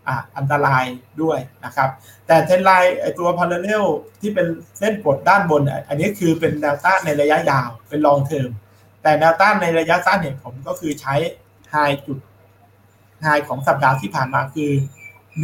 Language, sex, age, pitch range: Thai, male, 60-79, 115-165 Hz